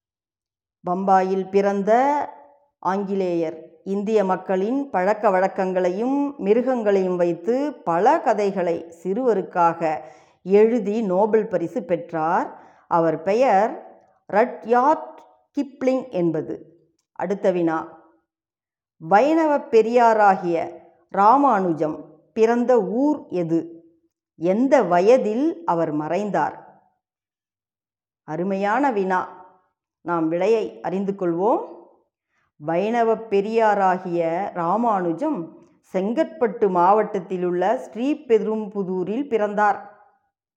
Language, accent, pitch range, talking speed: Tamil, native, 170-225 Hz, 70 wpm